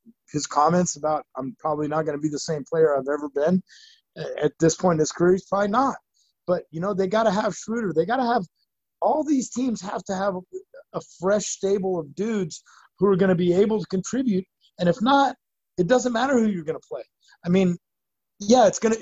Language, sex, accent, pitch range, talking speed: English, male, American, 150-205 Hz, 210 wpm